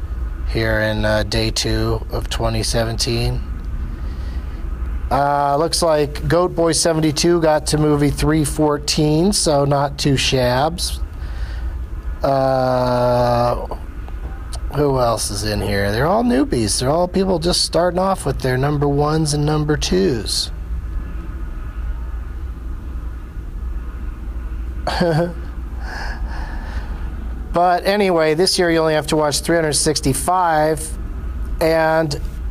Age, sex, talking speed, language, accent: 40-59, male, 100 wpm, English, American